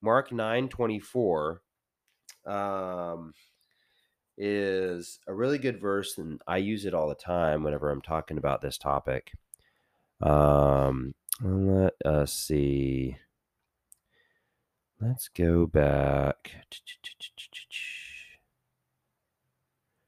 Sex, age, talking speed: male, 30-49, 90 wpm